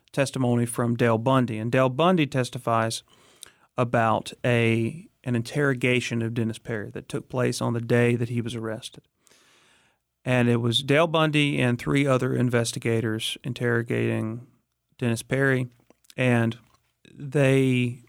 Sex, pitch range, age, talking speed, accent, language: male, 115-130 Hz, 40-59, 130 wpm, American, English